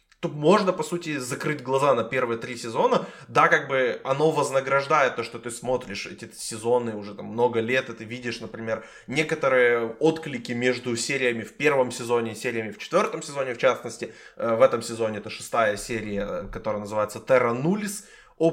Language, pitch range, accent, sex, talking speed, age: Ukrainian, 115-155 Hz, native, male, 175 wpm, 20-39